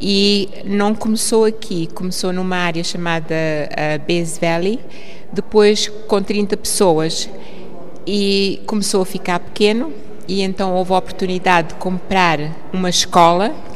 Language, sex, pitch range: Portuguese, female, 180-205 Hz